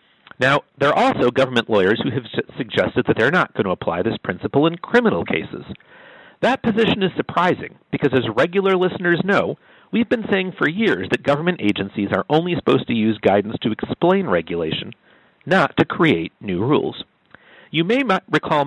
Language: English